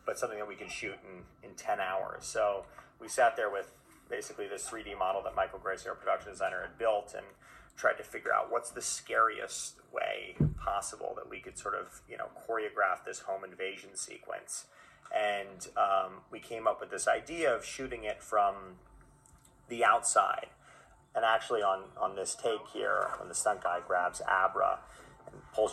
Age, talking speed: 30-49, 180 wpm